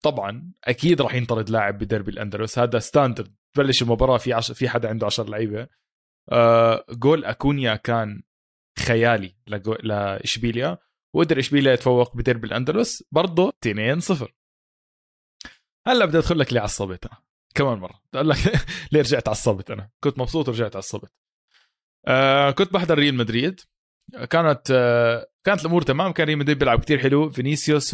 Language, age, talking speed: Arabic, 20-39, 140 wpm